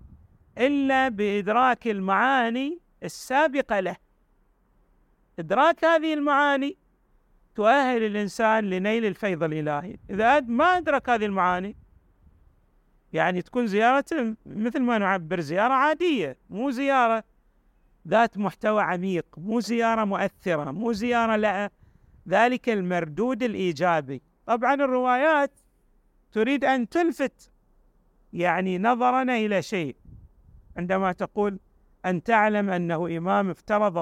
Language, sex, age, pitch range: Arabic, male, 40-59, 175-245 Hz